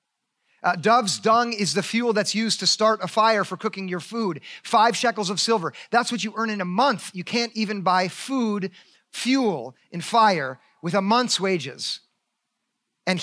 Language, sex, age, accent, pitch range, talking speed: English, male, 40-59, American, 185-225 Hz, 180 wpm